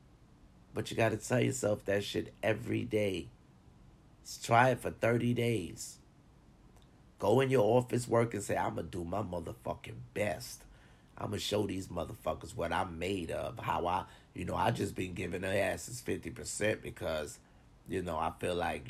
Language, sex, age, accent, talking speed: English, male, 30-49, American, 180 wpm